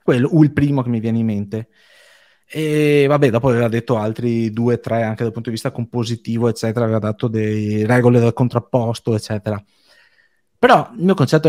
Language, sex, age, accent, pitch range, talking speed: Italian, male, 30-49, native, 115-145 Hz, 185 wpm